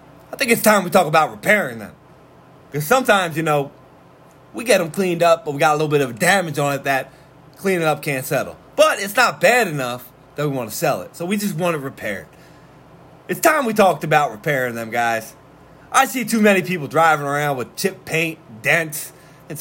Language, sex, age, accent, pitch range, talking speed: English, male, 30-49, American, 145-180 Hz, 215 wpm